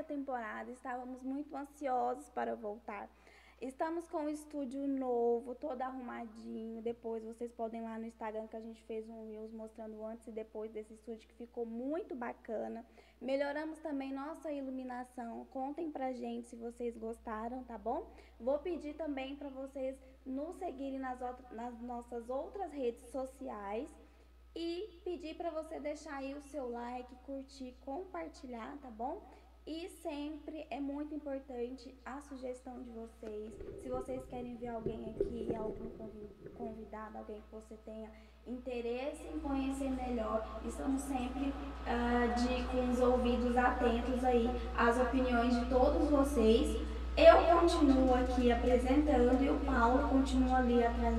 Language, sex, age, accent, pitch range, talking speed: Portuguese, female, 10-29, Brazilian, 230-275 Hz, 145 wpm